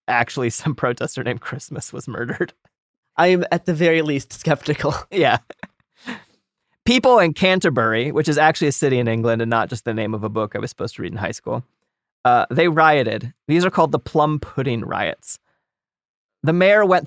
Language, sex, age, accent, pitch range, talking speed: English, male, 30-49, American, 130-170 Hz, 190 wpm